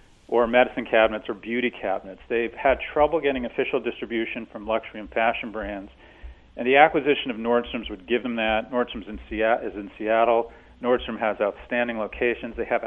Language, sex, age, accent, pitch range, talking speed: English, male, 40-59, American, 110-125 Hz, 170 wpm